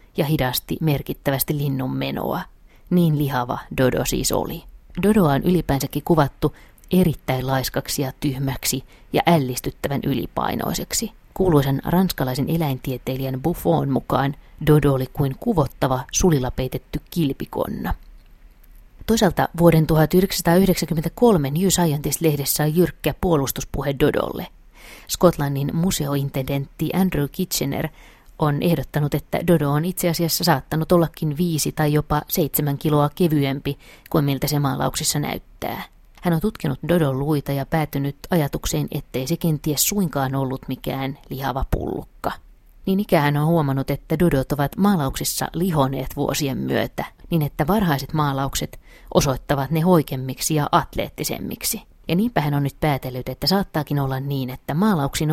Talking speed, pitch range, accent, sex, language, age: 125 wpm, 135-170 Hz, native, female, Finnish, 30-49